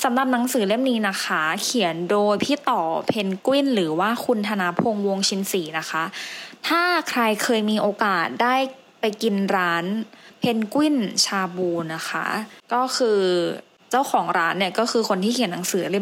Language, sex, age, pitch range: English, female, 20-39, 190-245 Hz